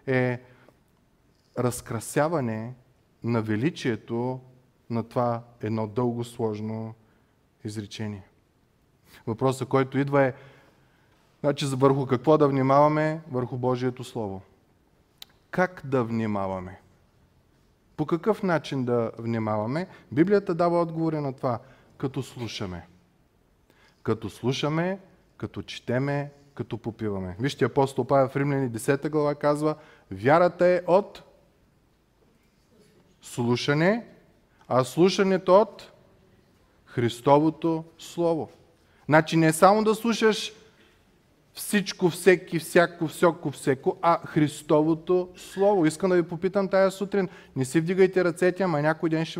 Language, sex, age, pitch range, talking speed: Bulgarian, male, 20-39, 120-165 Hz, 105 wpm